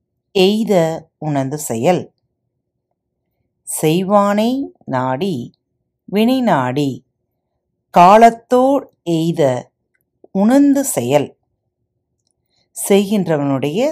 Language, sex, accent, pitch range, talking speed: Tamil, female, native, 135-220 Hz, 45 wpm